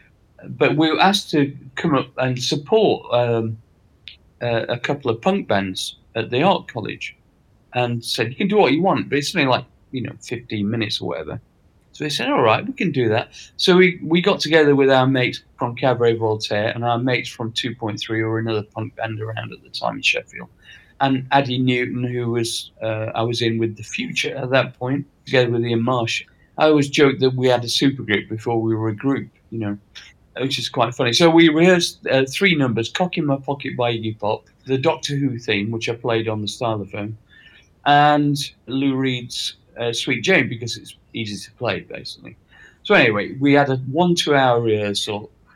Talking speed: 205 wpm